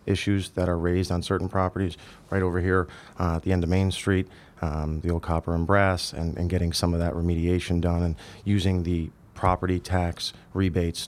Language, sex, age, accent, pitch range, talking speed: English, male, 30-49, American, 85-95 Hz, 200 wpm